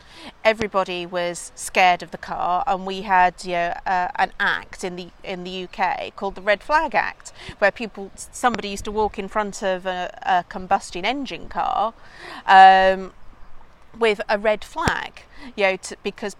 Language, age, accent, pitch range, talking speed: English, 40-59, British, 175-205 Hz, 170 wpm